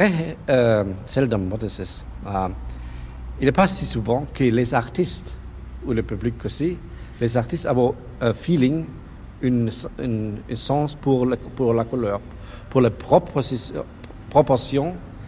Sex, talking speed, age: male, 140 wpm, 50-69